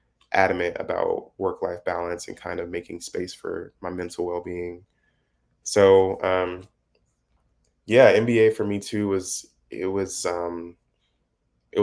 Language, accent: English, American